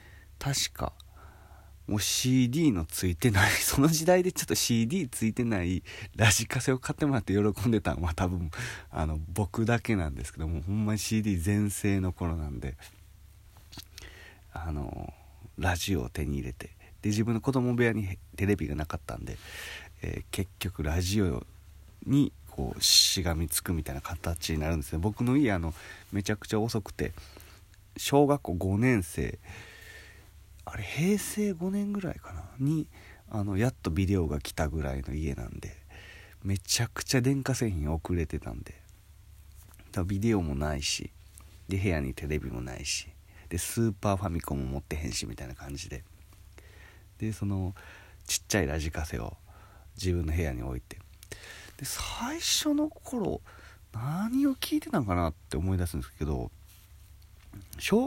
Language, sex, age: Japanese, male, 40-59